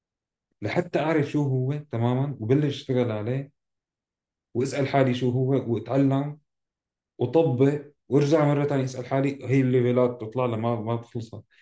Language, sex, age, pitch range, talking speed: Arabic, male, 30-49, 110-135 Hz, 130 wpm